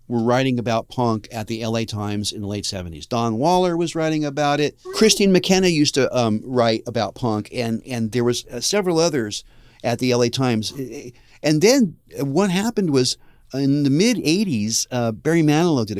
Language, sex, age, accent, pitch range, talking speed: English, male, 40-59, American, 115-150 Hz, 180 wpm